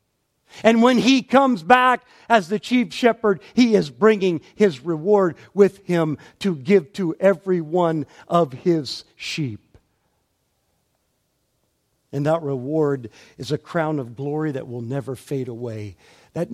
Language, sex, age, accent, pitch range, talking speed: English, male, 50-69, American, 120-165 Hz, 140 wpm